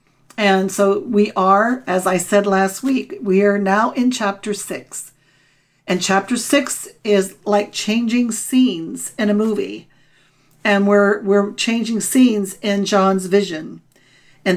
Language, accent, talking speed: English, American, 140 wpm